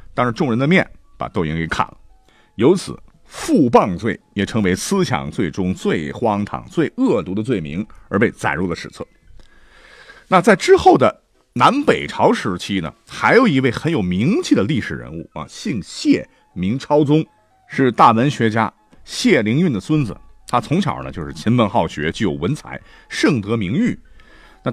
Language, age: Chinese, 50-69